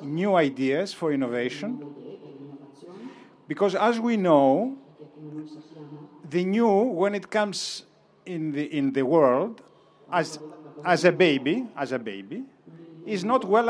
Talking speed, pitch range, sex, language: 125 wpm, 145-200 Hz, male, Italian